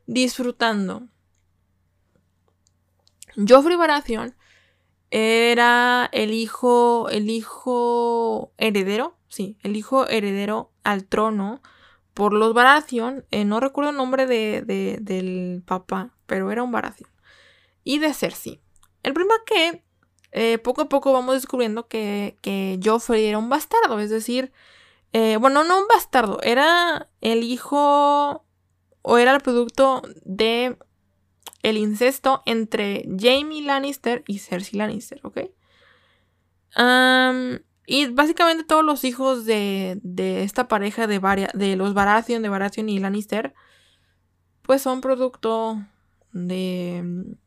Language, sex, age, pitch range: Spanish, female, 20-39, 195-255 Hz